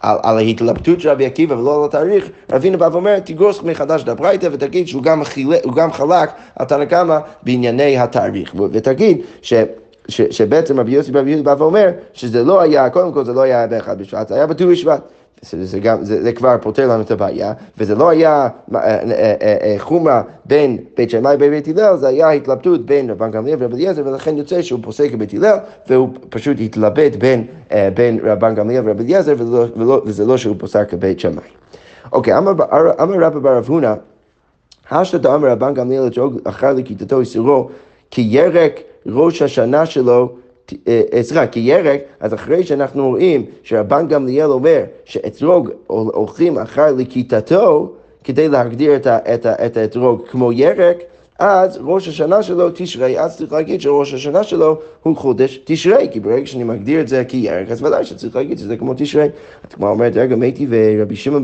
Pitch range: 120-155 Hz